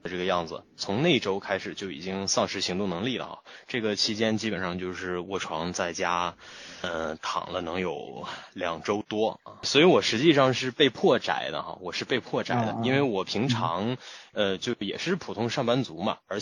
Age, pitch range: 20-39, 90-120 Hz